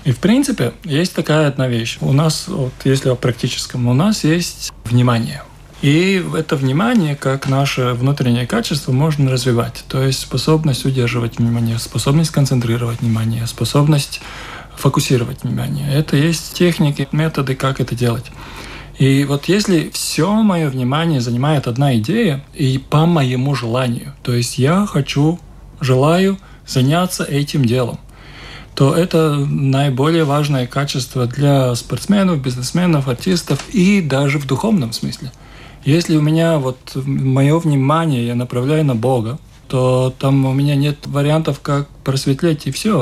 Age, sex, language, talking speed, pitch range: 20-39, male, Russian, 140 wpm, 130-160 Hz